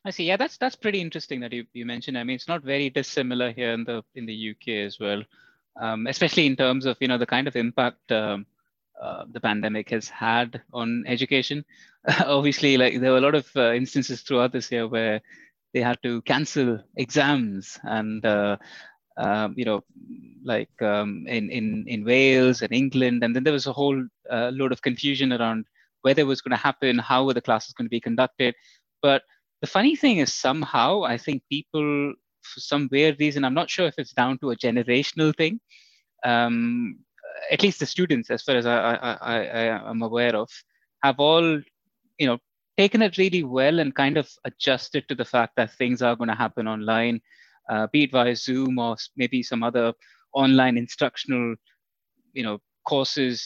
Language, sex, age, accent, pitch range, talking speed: English, male, 20-39, Indian, 120-150 Hz, 195 wpm